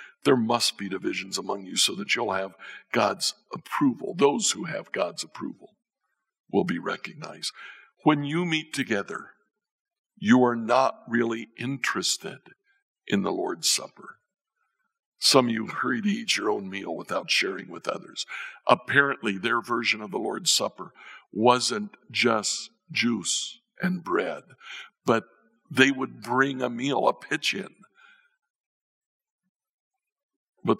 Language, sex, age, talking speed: English, male, 60-79, 135 wpm